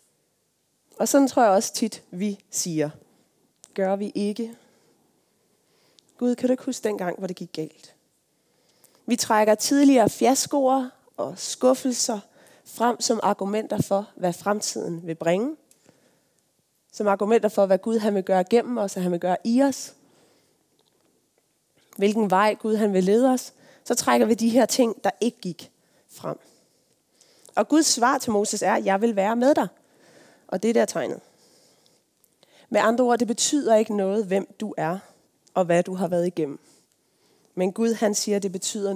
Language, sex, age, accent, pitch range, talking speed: Danish, female, 30-49, native, 190-235 Hz, 165 wpm